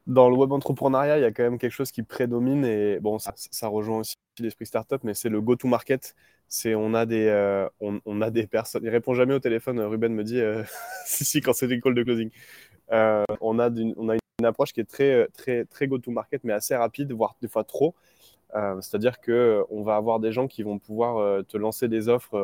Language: French